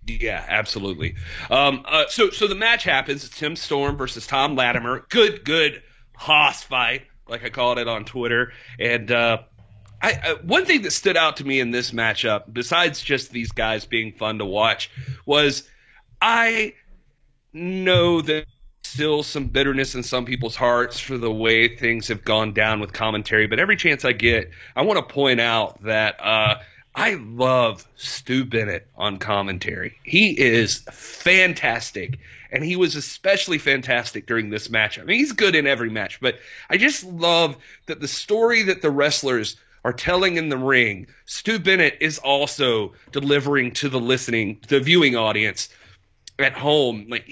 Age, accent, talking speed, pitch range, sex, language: 30-49, American, 170 wpm, 115-155 Hz, male, English